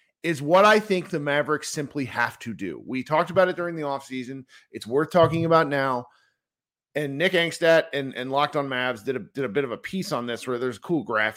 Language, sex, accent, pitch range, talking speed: English, male, American, 125-175 Hz, 240 wpm